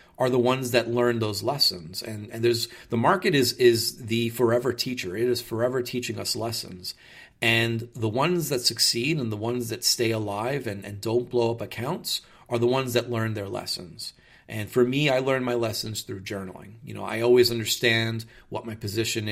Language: English